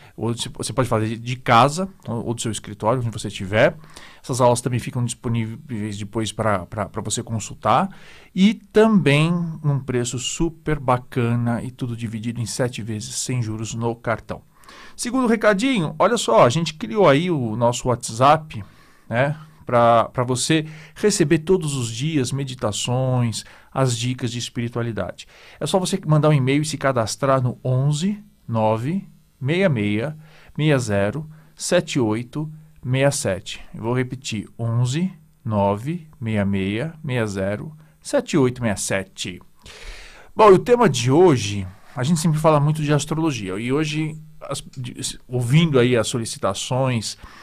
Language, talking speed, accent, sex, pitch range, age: Portuguese, 125 wpm, Brazilian, male, 115-155 Hz, 40-59